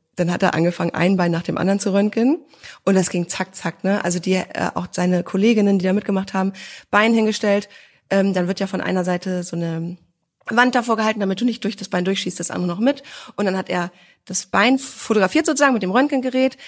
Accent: German